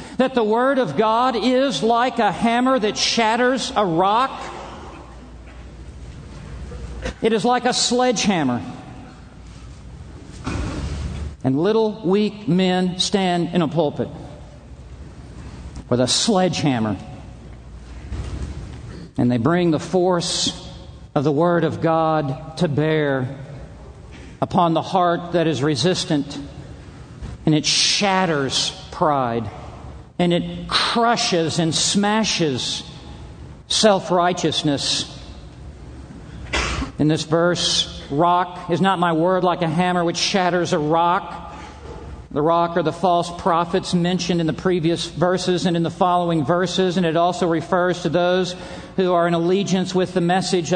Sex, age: male, 50-69